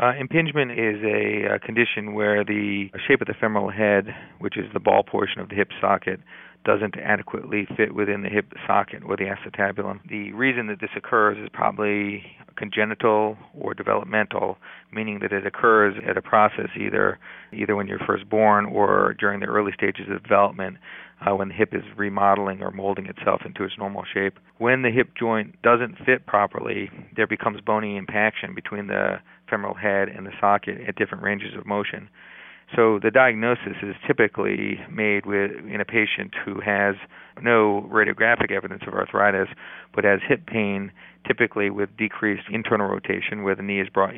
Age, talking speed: 40-59, 175 wpm